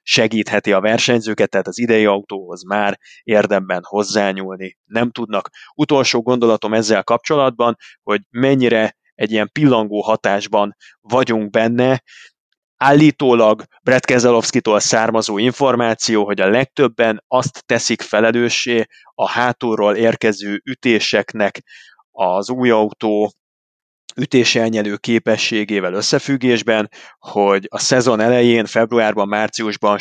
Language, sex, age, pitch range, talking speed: Hungarian, male, 30-49, 105-120 Hz, 100 wpm